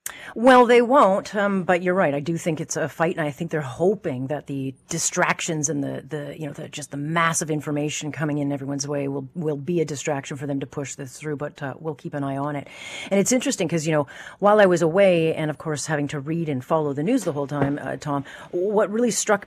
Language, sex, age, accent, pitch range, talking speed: English, female, 40-59, American, 145-180 Hz, 250 wpm